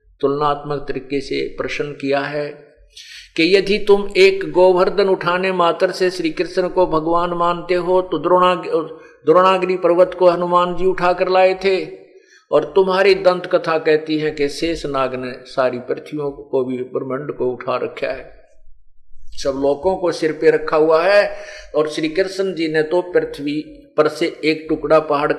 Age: 50-69